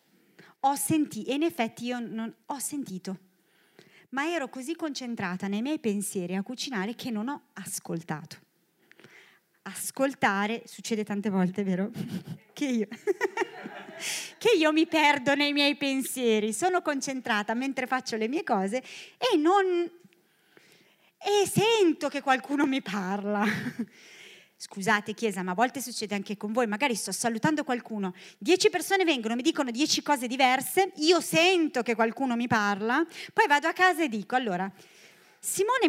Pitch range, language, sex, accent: 215-310 Hz, Italian, female, native